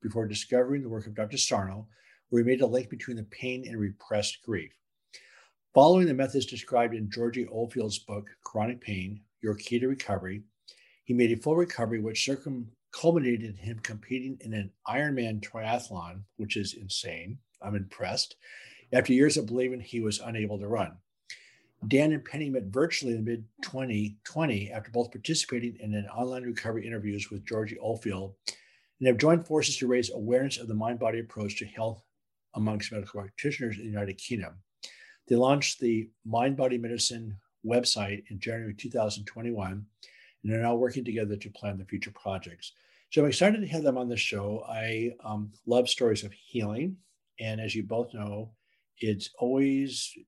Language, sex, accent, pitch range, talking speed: English, male, American, 105-125 Hz, 165 wpm